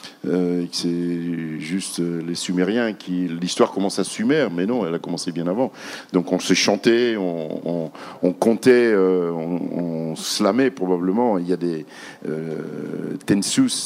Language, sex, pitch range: French, male, 90-120 Hz